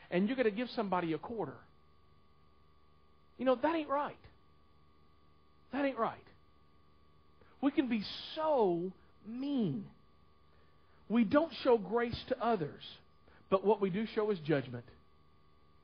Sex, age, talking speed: male, 50-69, 130 wpm